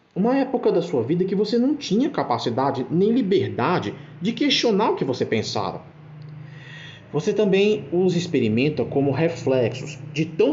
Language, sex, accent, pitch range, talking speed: Portuguese, male, Brazilian, 120-160 Hz, 150 wpm